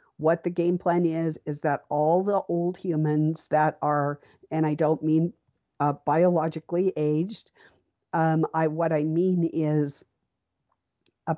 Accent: American